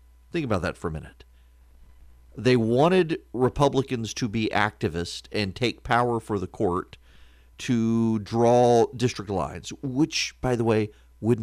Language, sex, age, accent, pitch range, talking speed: English, male, 40-59, American, 100-135 Hz, 140 wpm